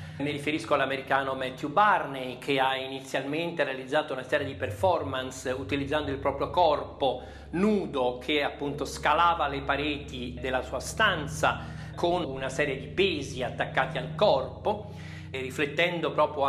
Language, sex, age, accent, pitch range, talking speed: Italian, male, 40-59, native, 135-170 Hz, 135 wpm